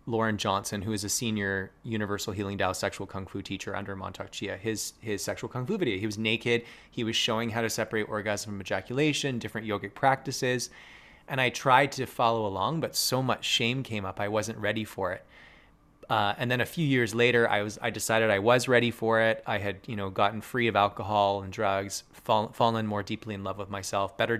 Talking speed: 220 wpm